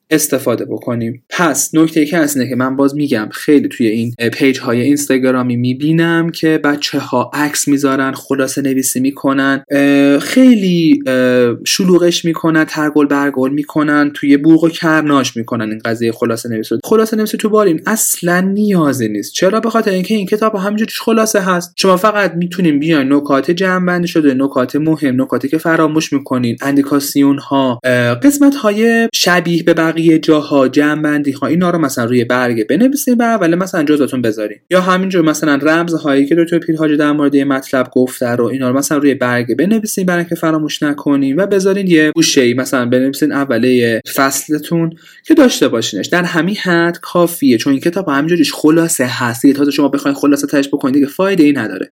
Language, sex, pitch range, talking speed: Persian, male, 135-170 Hz, 170 wpm